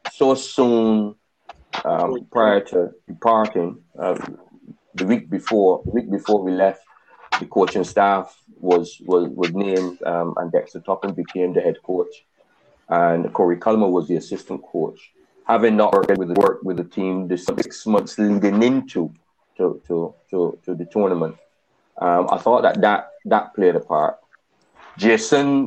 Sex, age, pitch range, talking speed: male, 30-49, 90-115 Hz, 155 wpm